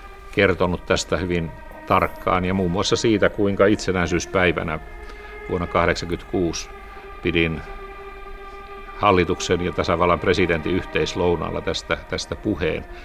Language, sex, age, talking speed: Finnish, male, 60-79, 95 wpm